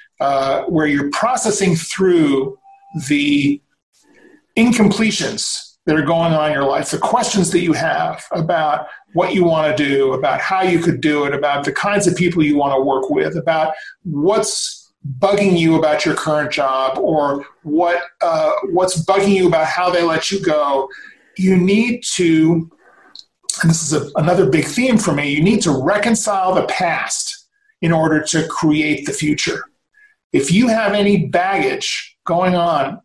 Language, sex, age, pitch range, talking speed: English, male, 40-59, 155-200 Hz, 170 wpm